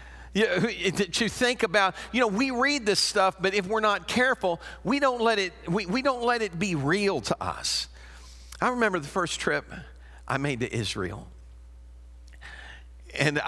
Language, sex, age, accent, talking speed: English, male, 50-69, American, 175 wpm